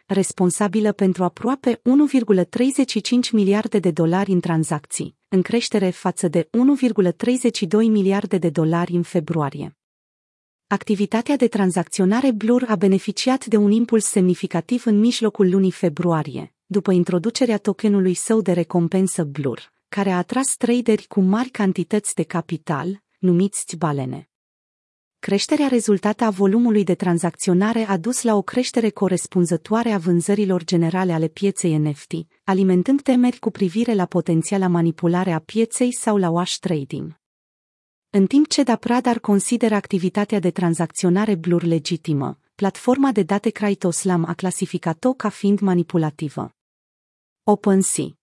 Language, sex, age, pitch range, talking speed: Romanian, female, 30-49, 175-220 Hz, 125 wpm